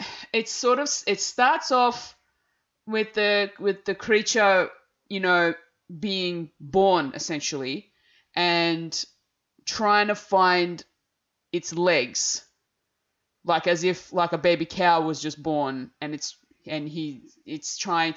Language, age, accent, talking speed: English, 20-39, Australian, 125 wpm